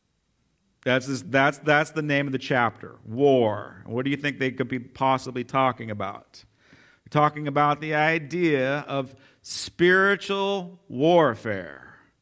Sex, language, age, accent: male, English, 40-59, American